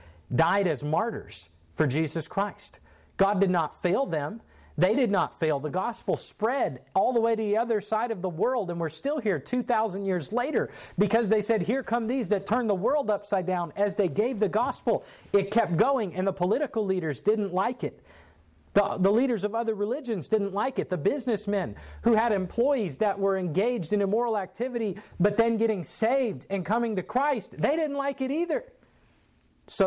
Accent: American